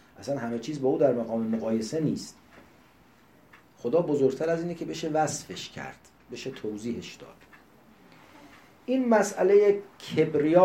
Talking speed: 130 wpm